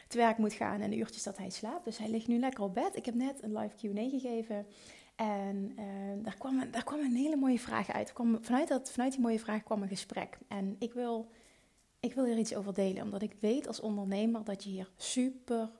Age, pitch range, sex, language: 30-49, 200-235 Hz, female, Dutch